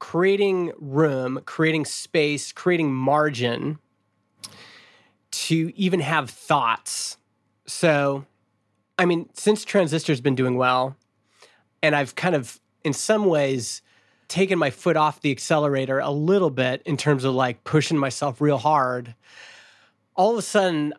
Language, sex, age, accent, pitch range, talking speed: English, male, 30-49, American, 130-160 Hz, 130 wpm